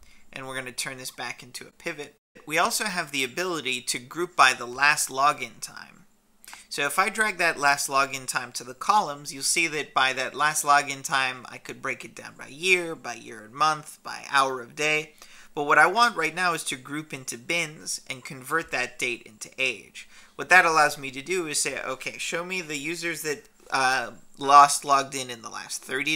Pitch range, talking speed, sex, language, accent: 130-170 Hz, 215 wpm, male, English, American